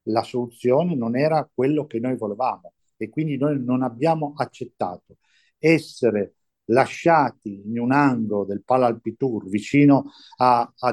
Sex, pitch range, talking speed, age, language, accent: male, 115-140 Hz, 135 wpm, 50-69, Italian, native